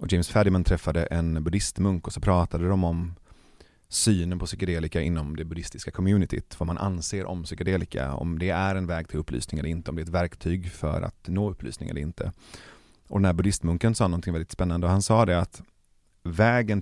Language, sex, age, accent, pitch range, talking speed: Swedish, male, 30-49, native, 85-100 Hz, 205 wpm